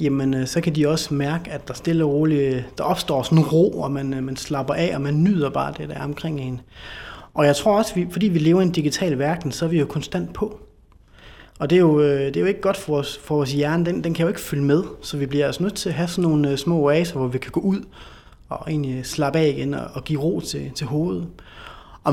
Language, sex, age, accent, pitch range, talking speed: Danish, male, 30-49, native, 145-180 Hz, 265 wpm